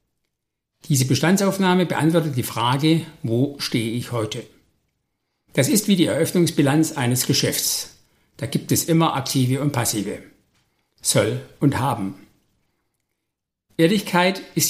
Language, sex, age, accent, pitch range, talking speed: German, male, 60-79, German, 130-165 Hz, 115 wpm